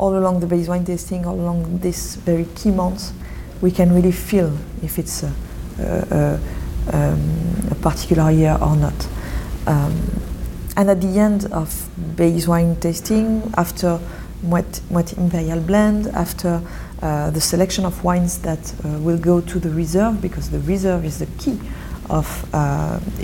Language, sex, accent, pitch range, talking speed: English, female, French, 165-195 Hz, 160 wpm